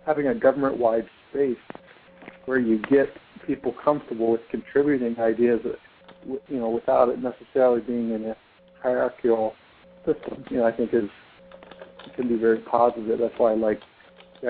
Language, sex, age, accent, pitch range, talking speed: English, male, 50-69, American, 115-150 Hz, 155 wpm